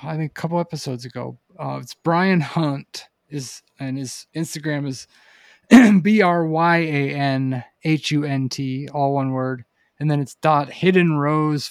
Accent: American